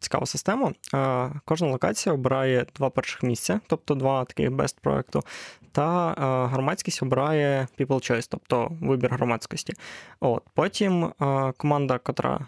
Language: Ukrainian